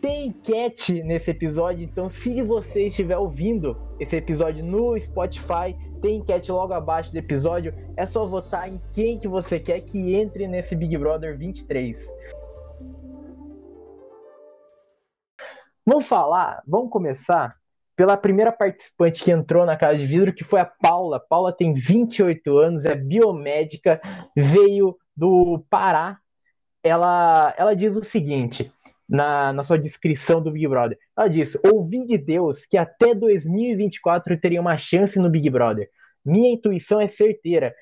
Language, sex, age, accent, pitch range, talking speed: Portuguese, male, 20-39, Brazilian, 160-210 Hz, 145 wpm